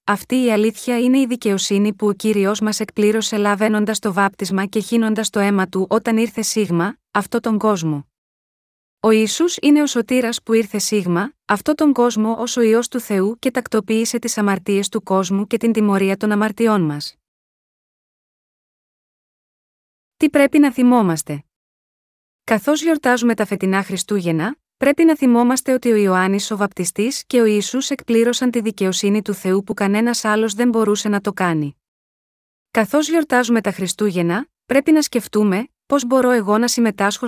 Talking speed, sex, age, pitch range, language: 160 wpm, female, 20-39, 200-240 Hz, Greek